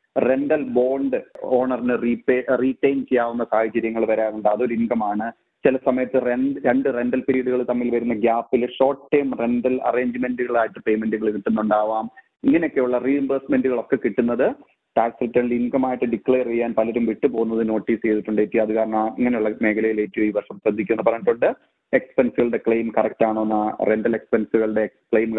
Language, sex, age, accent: Malayalam, male, 30-49, native